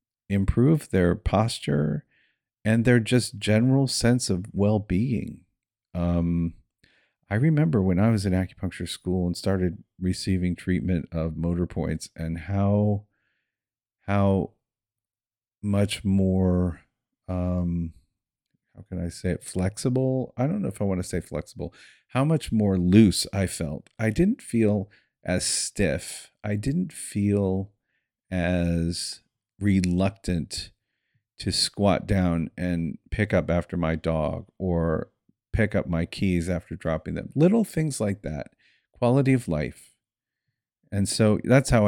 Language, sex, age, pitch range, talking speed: English, male, 40-59, 90-105 Hz, 130 wpm